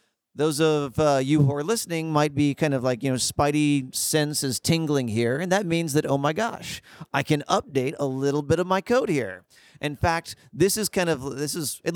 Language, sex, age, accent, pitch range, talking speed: English, male, 40-59, American, 125-155 Hz, 225 wpm